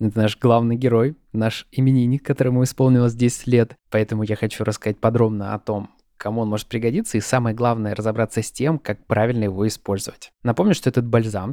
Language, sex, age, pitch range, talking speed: Russian, male, 20-39, 105-130 Hz, 180 wpm